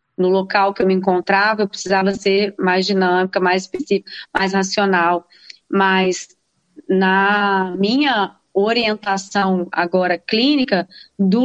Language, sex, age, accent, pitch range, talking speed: Portuguese, female, 20-39, Brazilian, 190-235 Hz, 115 wpm